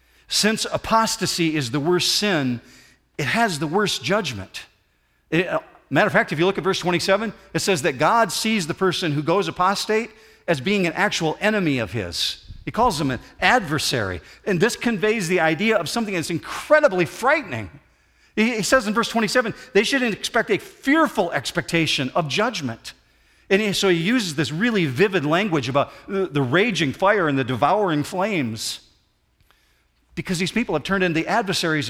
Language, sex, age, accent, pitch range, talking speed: English, male, 50-69, American, 145-200 Hz, 165 wpm